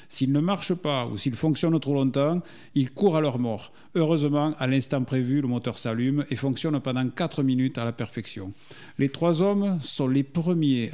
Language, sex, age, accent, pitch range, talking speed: French, male, 50-69, French, 125-155 Hz, 190 wpm